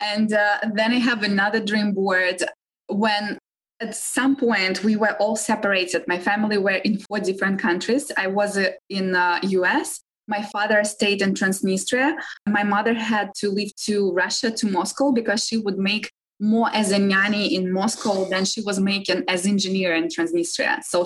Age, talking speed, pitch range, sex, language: 20-39, 180 wpm, 195-225 Hz, female, English